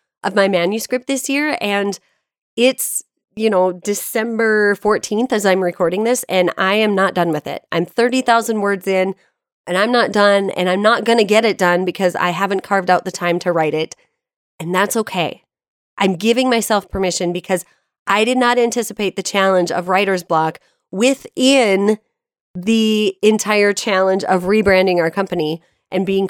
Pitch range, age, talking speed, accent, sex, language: 180-220 Hz, 30-49, 170 wpm, American, female, English